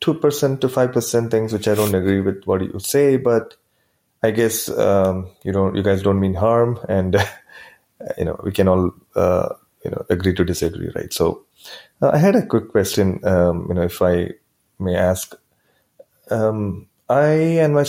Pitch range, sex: 90-110 Hz, male